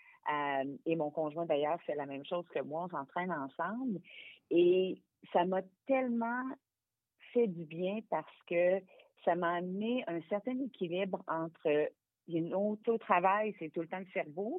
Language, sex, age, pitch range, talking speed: French, female, 50-69, 165-230 Hz, 165 wpm